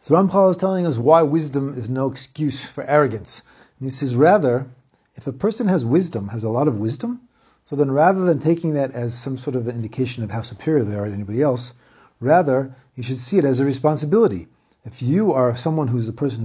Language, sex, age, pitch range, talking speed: English, male, 40-59, 125-175 Hz, 225 wpm